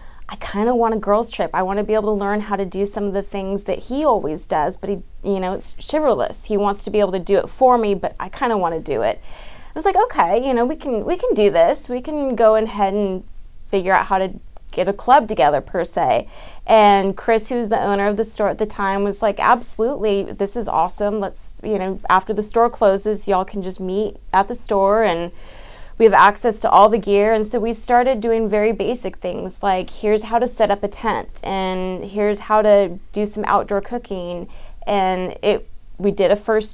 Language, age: English, 20-39